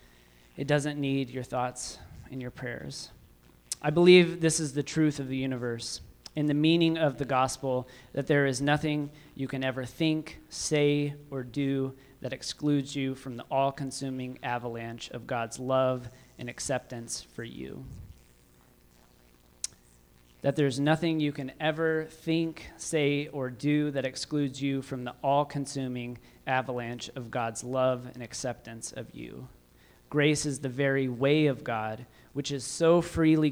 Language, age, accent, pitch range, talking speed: English, 30-49, American, 120-145 Hz, 150 wpm